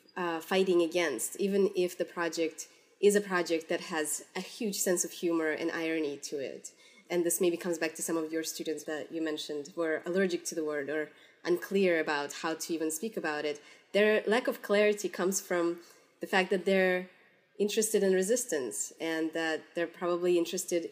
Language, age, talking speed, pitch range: English, 20-39, 190 wpm, 160-195 Hz